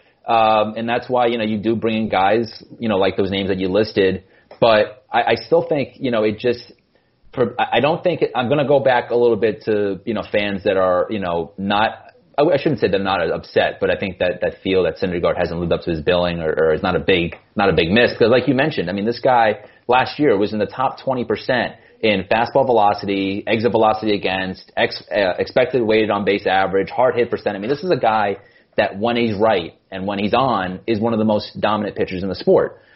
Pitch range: 95-120 Hz